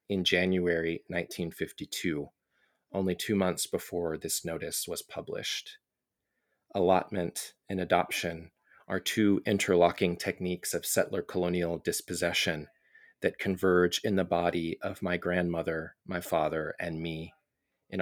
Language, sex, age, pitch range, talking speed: English, male, 30-49, 85-95 Hz, 115 wpm